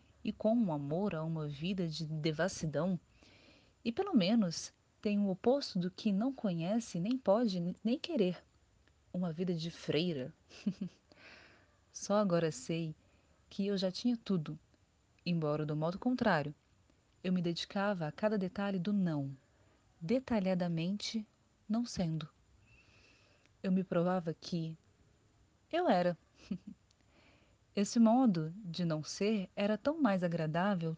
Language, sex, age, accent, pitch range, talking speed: Portuguese, female, 30-49, Brazilian, 150-205 Hz, 125 wpm